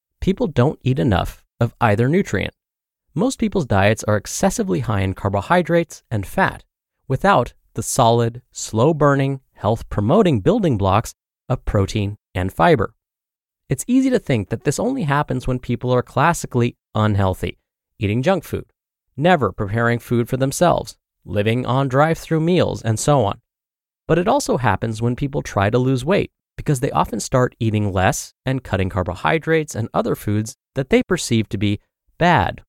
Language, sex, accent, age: English, male, American, 30-49